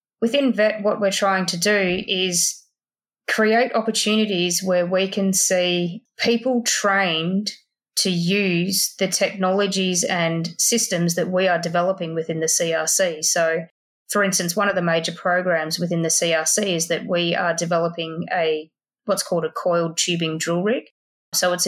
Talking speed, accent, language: 150 wpm, Australian, English